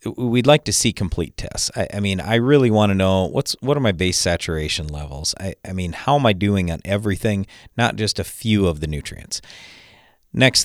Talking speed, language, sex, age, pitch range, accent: 215 wpm, English, male, 40-59, 90-115 Hz, American